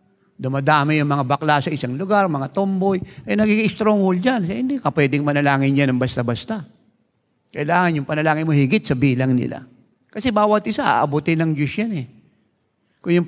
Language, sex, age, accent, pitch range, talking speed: English, male, 50-69, Filipino, 130-175 Hz, 175 wpm